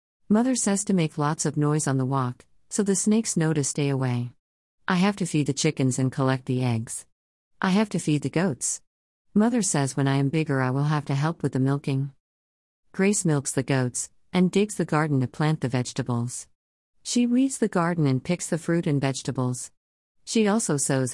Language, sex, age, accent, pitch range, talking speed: English, female, 50-69, American, 130-170 Hz, 205 wpm